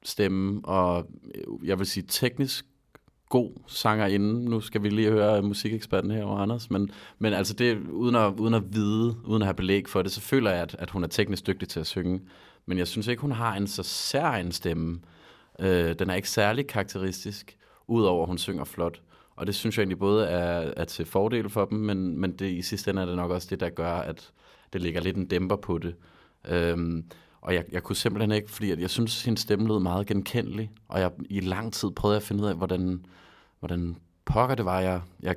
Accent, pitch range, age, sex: native, 90-110 Hz, 30-49, male